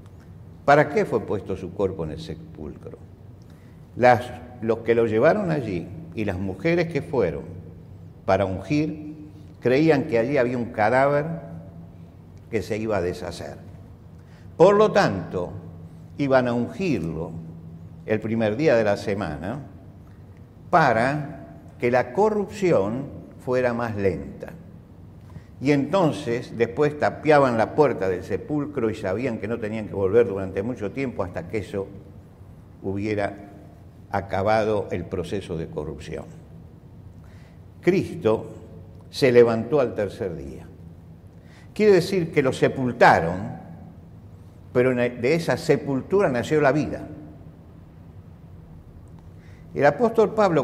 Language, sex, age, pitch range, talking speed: Spanish, male, 50-69, 85-130 Hz, 115 wpm